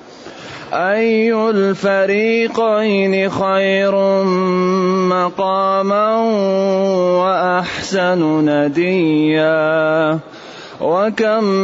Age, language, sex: 30-49, Arabic, male